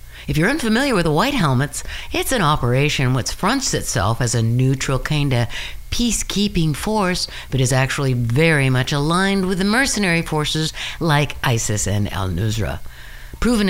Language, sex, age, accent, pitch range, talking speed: English, female, 60-79, American, 120-195 Hz, 155 wpm